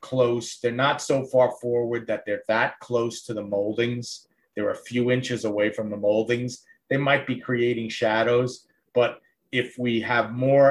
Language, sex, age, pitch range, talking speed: English, male, 30-49, 115-130 Hz, 175 wpm